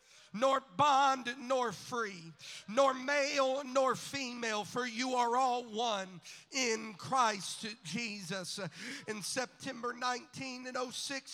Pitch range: 195-245 Hz